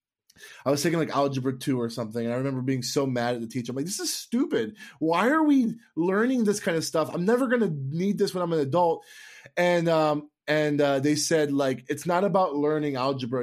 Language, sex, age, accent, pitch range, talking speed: English, male, 20-39, American, 135-175 Hz, 230 wpm